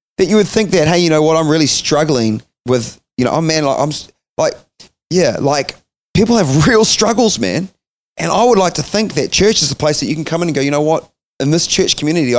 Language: English